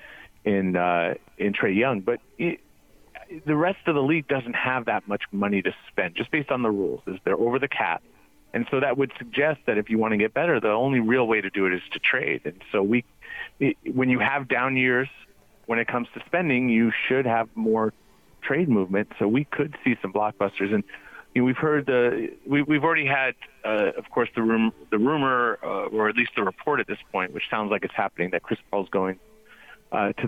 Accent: American